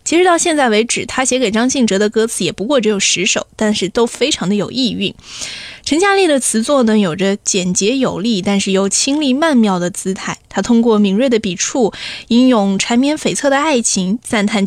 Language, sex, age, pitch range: Chinese, female, 20-39, 205-260 Hz